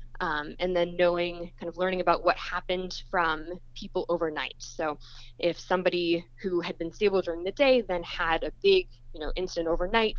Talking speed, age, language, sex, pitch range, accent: 185 wpm, 20-39, English, female, 155-185 Hz, American